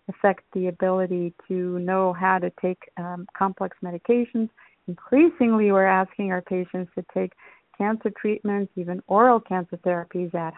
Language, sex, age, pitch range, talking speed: English, female, 50-69, 185-230 Hz, 140 wpm